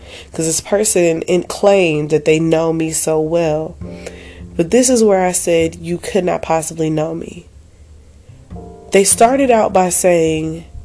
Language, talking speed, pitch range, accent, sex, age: English, 150 wpm, 155-190 Hz, American, female, 20-39